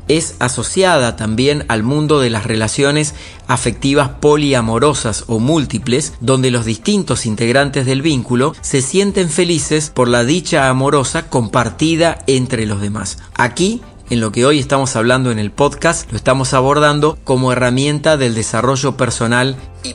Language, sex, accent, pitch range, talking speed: Spanish, male, Argentinian, 120-155 Hz, 145 wpm